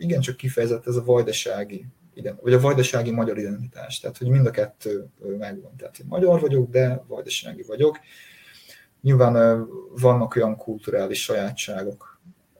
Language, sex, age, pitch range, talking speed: Hungarian, male, 30-49, 115-135 Hz, 140 wpm